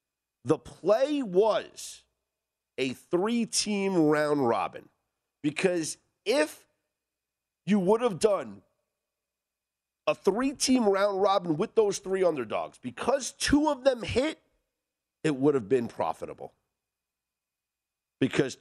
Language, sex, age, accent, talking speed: English, male, 50-69, American, 105 wpm